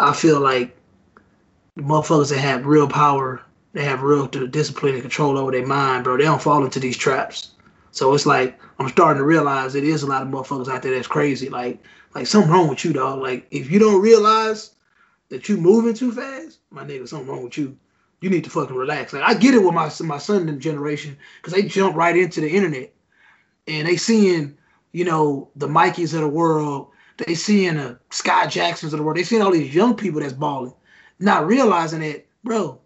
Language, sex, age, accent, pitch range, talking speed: English, male, 20-39, American, 150-220 Hz, 210 wpm